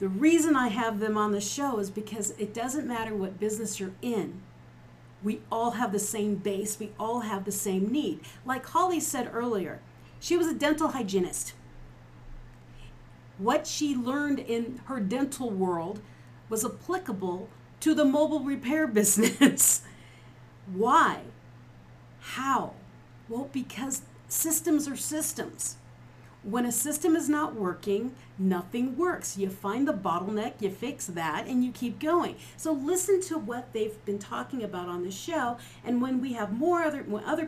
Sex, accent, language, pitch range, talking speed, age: female, American, English, 200-265 Hz, 155 wpm, 50-69